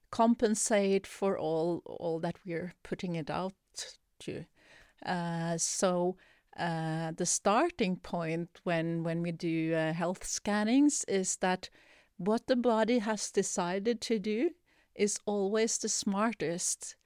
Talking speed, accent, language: 125 wpm, Swedish, English